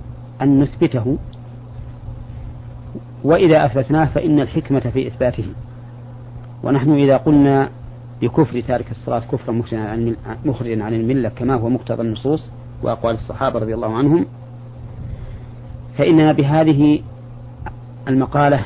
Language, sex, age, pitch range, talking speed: Arabic, male, 40-59, 120-130 Hz, 95 wpm